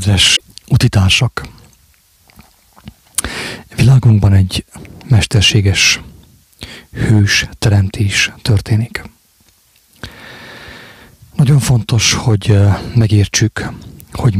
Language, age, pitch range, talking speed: English, 40-59, 105-120 Hz, 50 wpm